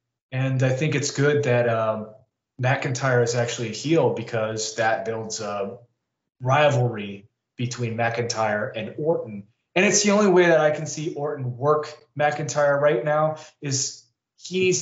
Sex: male